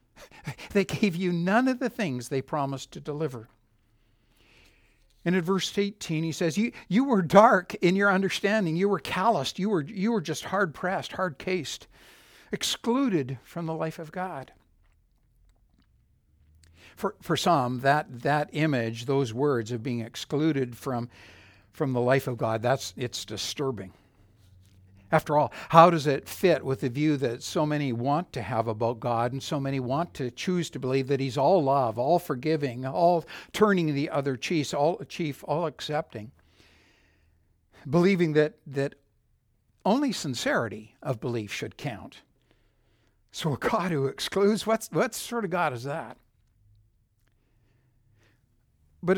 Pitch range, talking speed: 115-175 Hz, 150 wpm